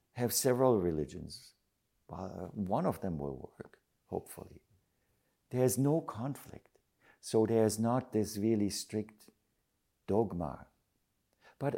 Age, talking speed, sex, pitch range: 60-79, 100 wpm, male, 85-110 Hz